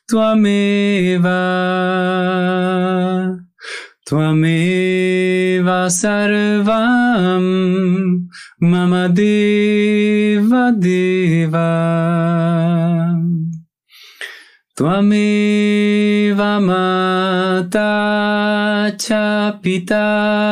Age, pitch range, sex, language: 30-49, 180-210 Hz, male, Spanish